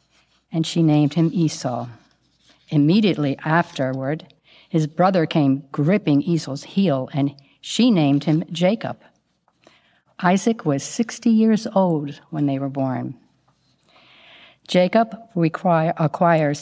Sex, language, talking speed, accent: female, English, 105 wpm, American